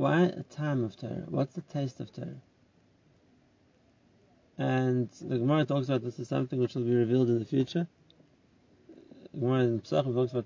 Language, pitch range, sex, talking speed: English, 125-155 Hz, male, 165 wpm